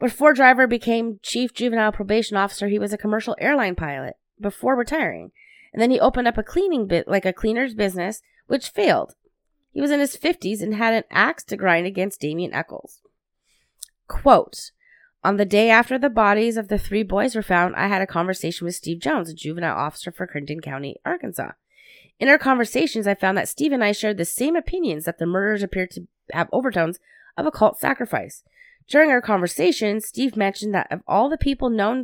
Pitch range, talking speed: 180-250 Hz, 200 wpm